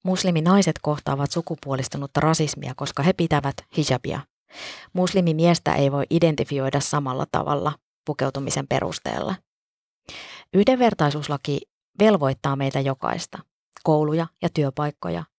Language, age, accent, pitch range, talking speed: Finnish, 20-39, native, 145-165 Hz, 90 wpm